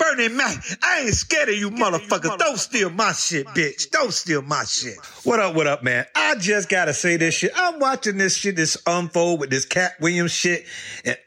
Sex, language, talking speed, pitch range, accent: male, English, 215 wpm, 175-275 Hz, American